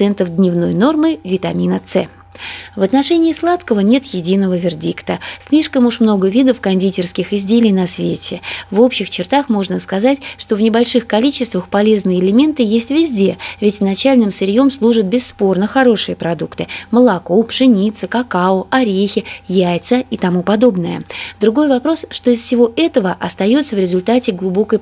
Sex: female